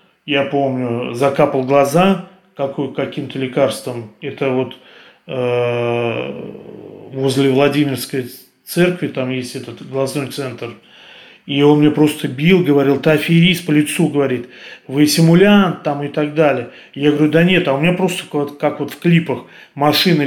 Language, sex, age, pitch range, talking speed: Russian, male, 30-49, 135-165 Hz, 135 wpm